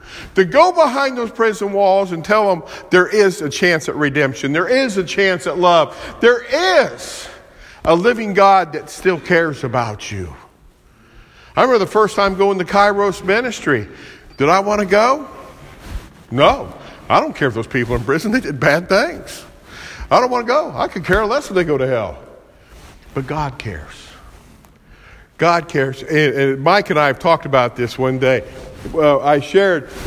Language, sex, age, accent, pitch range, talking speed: English, male, 50-69, American, 145-195 Hz, 180 wpm